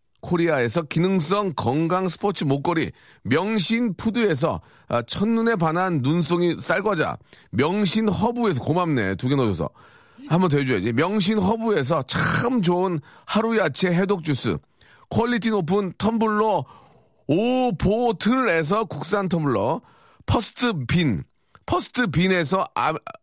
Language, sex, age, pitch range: Korean, male, 40-59, 145-215 Hz